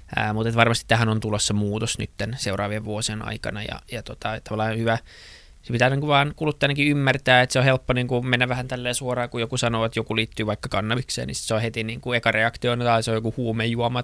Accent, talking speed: native, 220 wpm